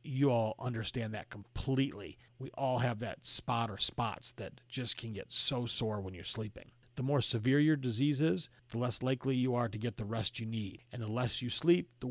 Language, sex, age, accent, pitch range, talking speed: English, male, 40-59, American, 115-140 Hz, 220 wpm